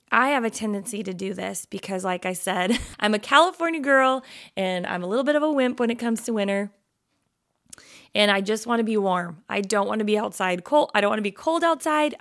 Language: English